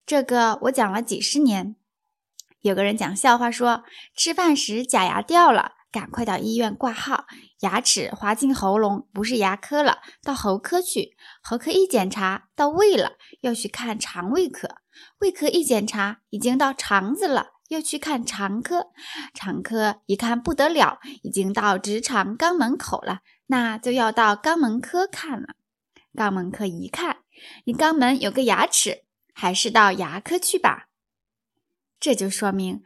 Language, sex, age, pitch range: Chinese, female, 10-29, 205-285 Hz